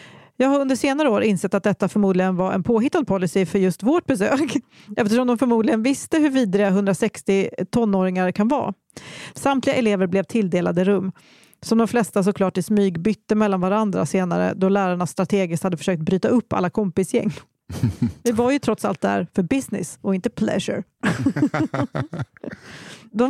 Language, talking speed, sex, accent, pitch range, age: English, 160 wpm, female, Swedish, 190-240 Hz, 40-59